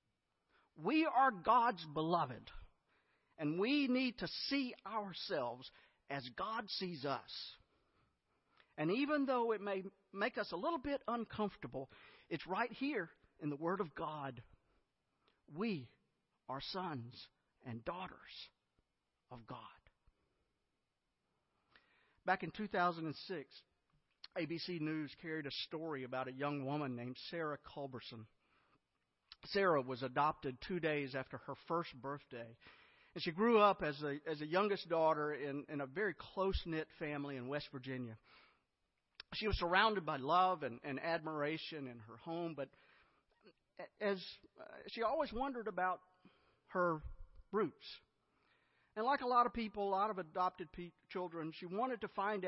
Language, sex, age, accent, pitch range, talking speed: English, male, 50-69, American, 140-195 Hz, 135 wpm